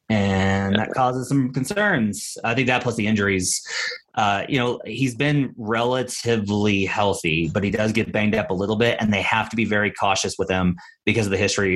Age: 30-49